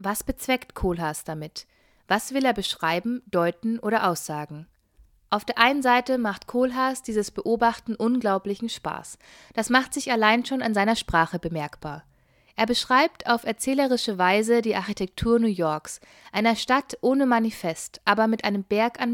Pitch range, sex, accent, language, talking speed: 190-240 Hz, female, German, German, 150 wpm